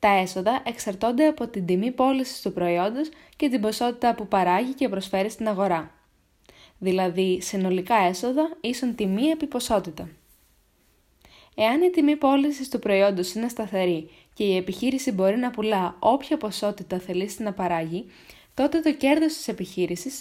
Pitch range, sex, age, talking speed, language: 185-260 Hz, female, 10-29, 145 wpm, Greek